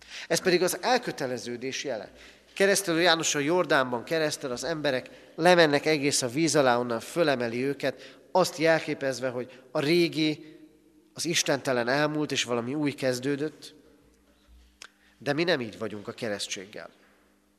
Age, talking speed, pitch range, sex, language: 30-49, 135 wpm, 110-160 Hz, male, Hungarian